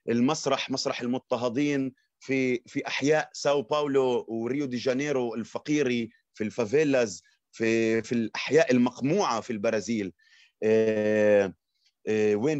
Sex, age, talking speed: male, 30-49, 110 wpm